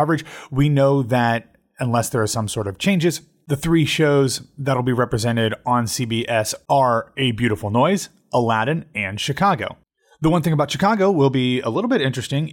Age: 30-49